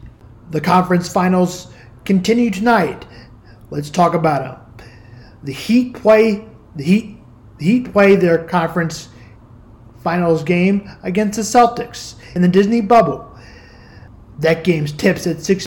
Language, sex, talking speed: English, male, 125 wpm